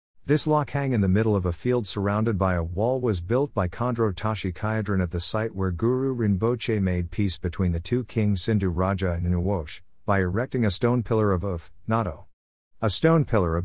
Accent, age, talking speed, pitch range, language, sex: American, 50-69, 200 wpm, 90-115 Hz, English, male